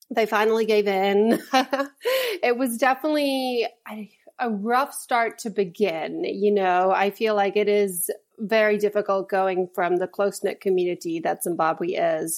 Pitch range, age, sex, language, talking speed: 180-220 Hz, 30-49, female, English, 150 wpm